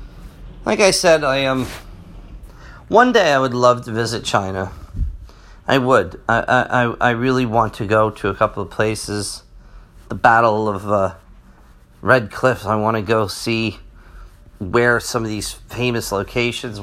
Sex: male